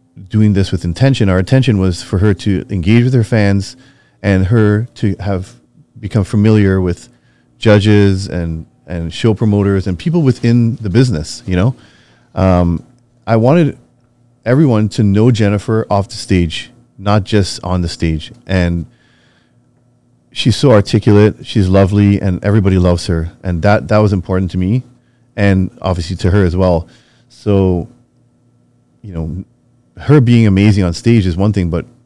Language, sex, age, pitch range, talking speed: English, male, 30-49, 90-115 Hz, 155 wpm